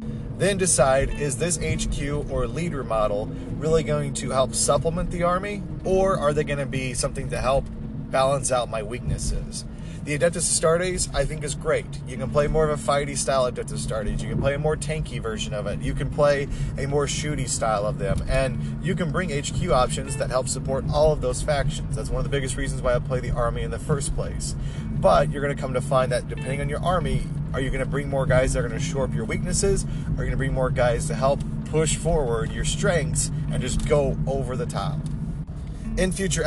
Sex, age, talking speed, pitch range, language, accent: male, 40-59, 230 wpm, 125-155 Hz, English, American